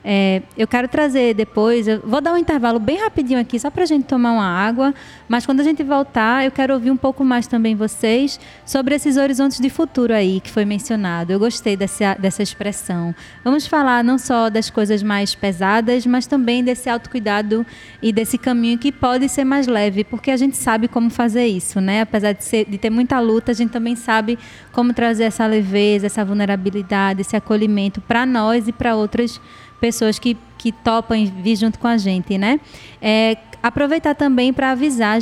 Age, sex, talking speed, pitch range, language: 20-39, female, 195 wpm, 210-260 Hz, Portuguese